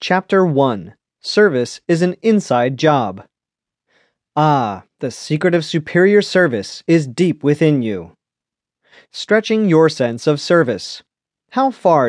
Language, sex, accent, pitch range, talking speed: English, male, American, 140-190 Hz, 120 wpm